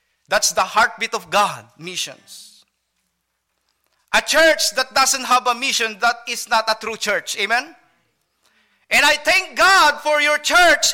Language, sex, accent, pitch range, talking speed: English, male, Filipino, 210-305 Hz, 150 wpm